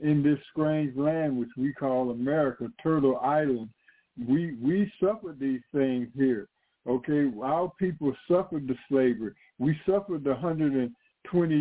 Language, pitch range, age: English, 130-165 Hz, 60-79